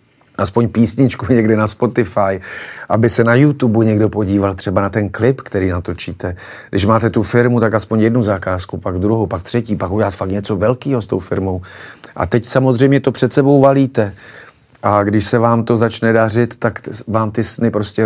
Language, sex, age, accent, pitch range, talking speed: Czech, male, 40-59, native, 100-120 Hz, 185 wpm